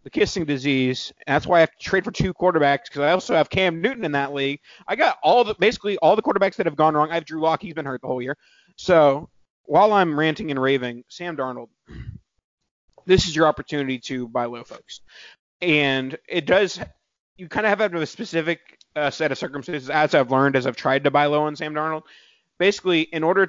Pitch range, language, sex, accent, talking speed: 135-170 Hz, English, male, American, 230 wpm